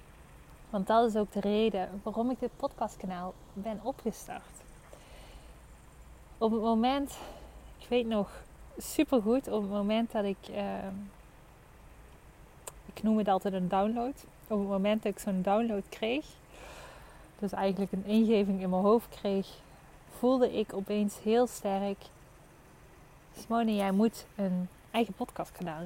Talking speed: 135 wpm